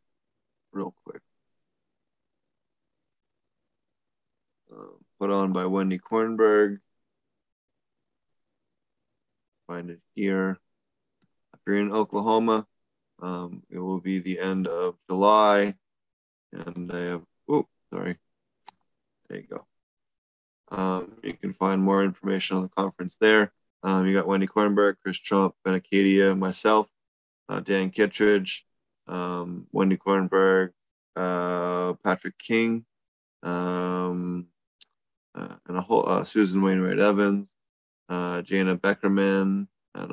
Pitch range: 90-100 Hz